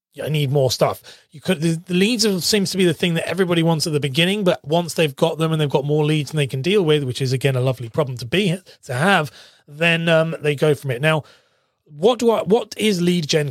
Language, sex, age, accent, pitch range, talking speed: English, male, 30-49, British, 150-185 Hz, 260 wpm